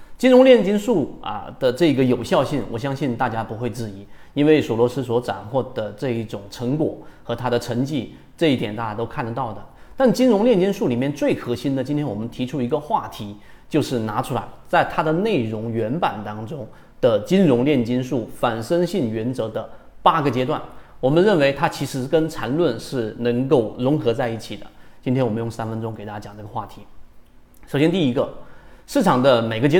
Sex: male